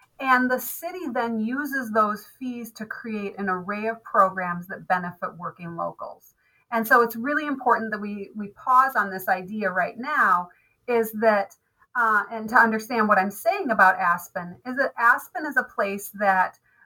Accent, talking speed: American, 175 wpm